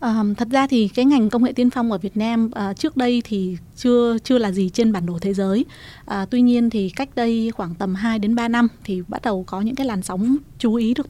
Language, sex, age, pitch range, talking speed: Vietnamese, female, 20-39, 200-240 Hz, 265 wpm